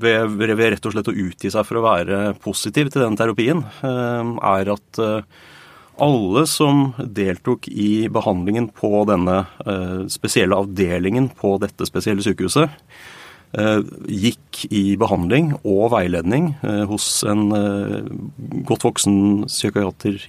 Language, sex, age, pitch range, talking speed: English, male, 30-49, 100-125 Hz, 120 wpm